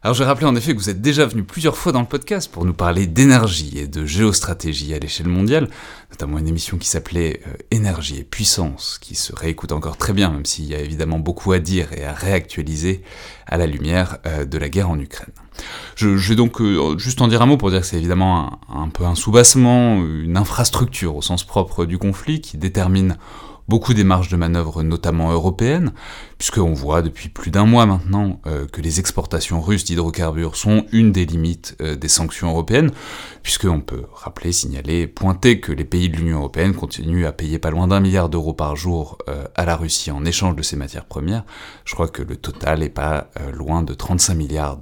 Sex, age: male, 30-49